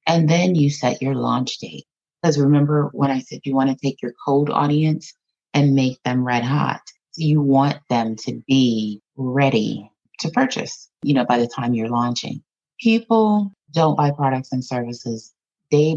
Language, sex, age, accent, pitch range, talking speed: English, female, 30-49, American, 125-155 Hz, 175 wpm